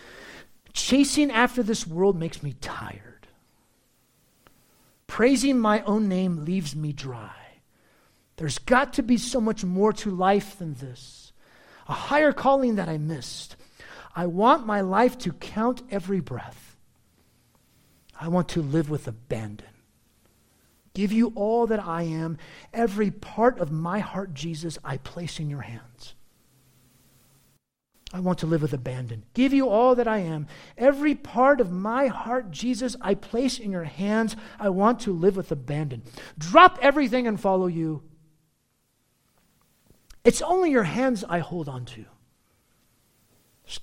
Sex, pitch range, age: male, 150-235 Hz, 50-69